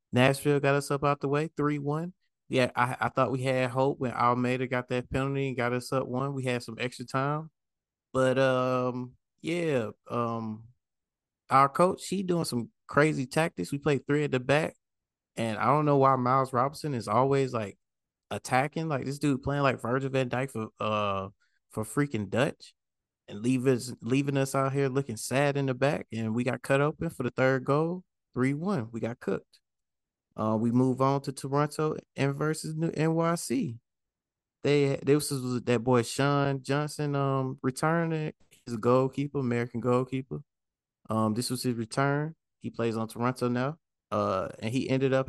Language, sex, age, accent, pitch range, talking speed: English, male, 20-39, American, 120-140 Hz, 185 wpm